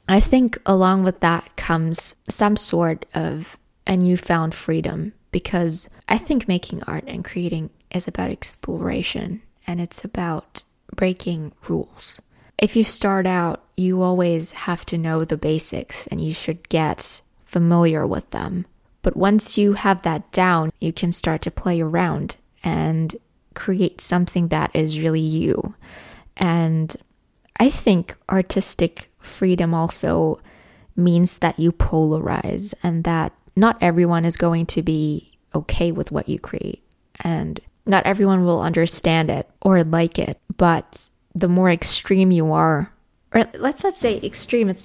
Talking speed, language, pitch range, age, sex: 145 wpm, English, 165-195 Hz, 20-39, female